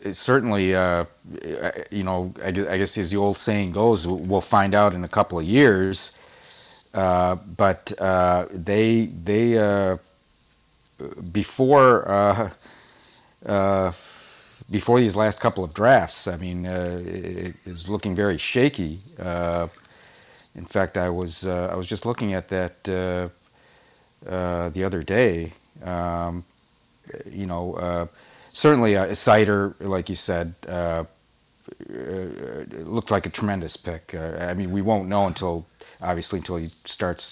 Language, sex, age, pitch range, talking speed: English, male, 40-59, 85-100 Hz, 145 wpm